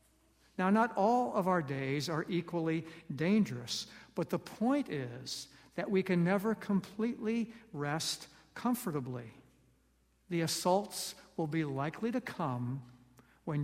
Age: 60-79